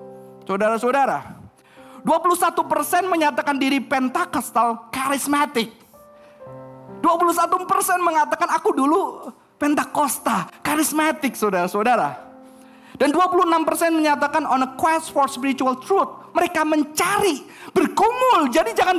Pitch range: 255-345 Hz